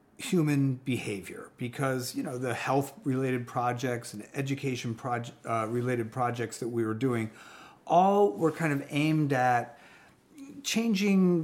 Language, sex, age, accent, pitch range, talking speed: English, male, 40-59, American, 115-140 Hz, 130 wpm